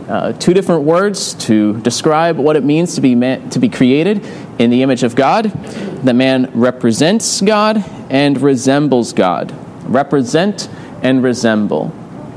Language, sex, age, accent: English, male, 30-49, American